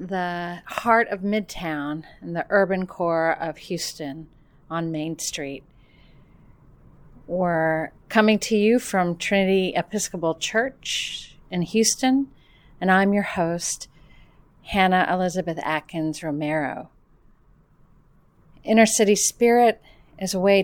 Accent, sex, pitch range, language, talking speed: American, female, 155-195 Hz, English, 110 wpm